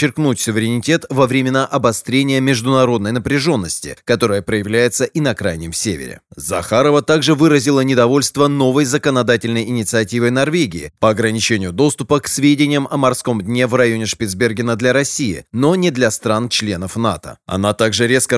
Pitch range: 115-140 Hz